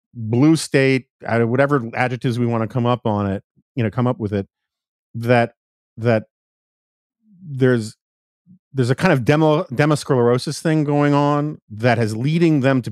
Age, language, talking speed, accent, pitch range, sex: 40-59, English, 160 wpm, American, 120-150 Hz, male